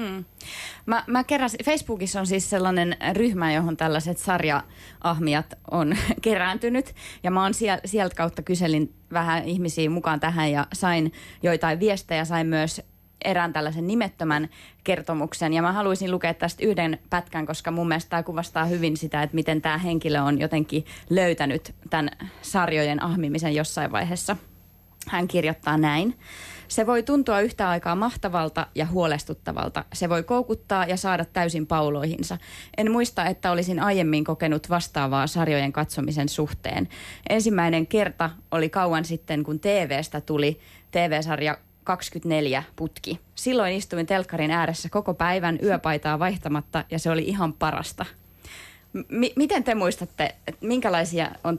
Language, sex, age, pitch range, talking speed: Finnish, female, 20-39, 155-185 Hz, 130 wpm